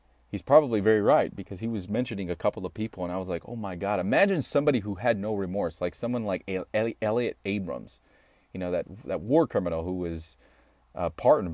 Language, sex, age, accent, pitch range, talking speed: English, male, 30-49, American, 90-145 Hz, 215 wpm